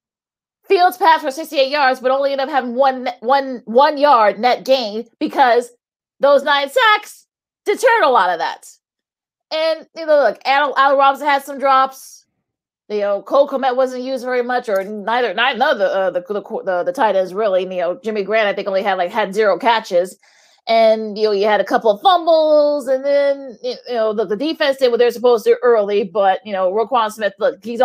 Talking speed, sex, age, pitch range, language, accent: 210 wpm, female, 30-49, 205-275 Hz, English, American